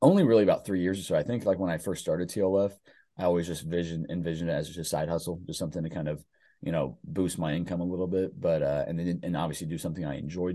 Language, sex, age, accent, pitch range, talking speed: English, male, 30-49, American, 85-100 Hz, 280 wpm